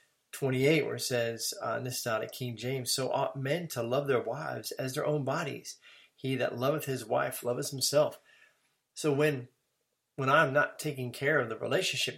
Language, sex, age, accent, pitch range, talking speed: English, male, 30-49, American, 120-140 Hz, 190 wpm